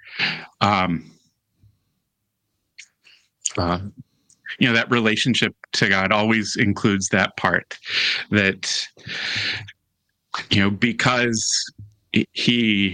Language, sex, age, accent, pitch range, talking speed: English, male, 30-49, American, 100-110 Hz, 80 wpm